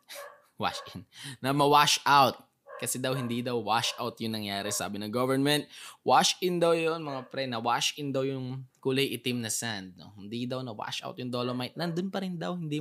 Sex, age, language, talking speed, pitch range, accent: male, 20-39, Filipino, 170 wpm, 115-155 Hz, native